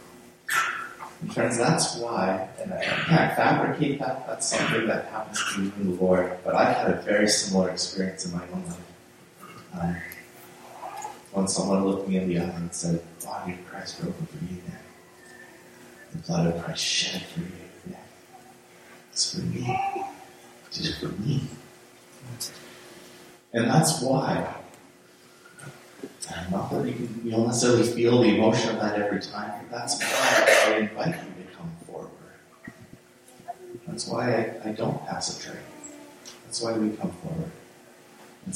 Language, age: English, 30-49